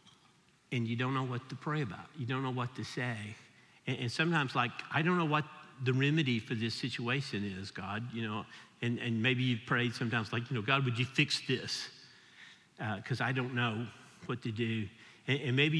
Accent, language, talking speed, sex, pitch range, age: American, English, 215 wpm, male, 120-150 Hz, 50-69